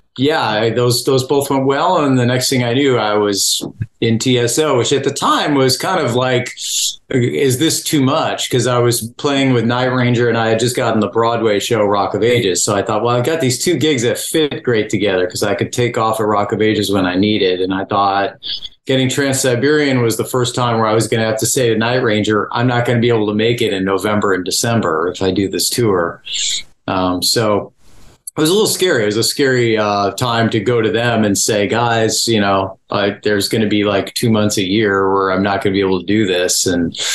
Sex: male